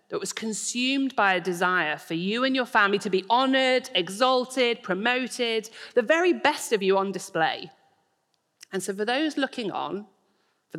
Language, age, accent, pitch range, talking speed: English, 40-59, British, 185-260 Hz, 165 wpm